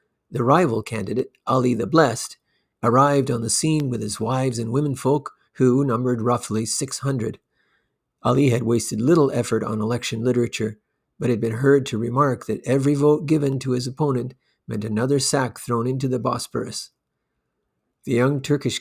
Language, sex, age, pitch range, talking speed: English, male, 50-69, 115-140 Hz, 165 wpm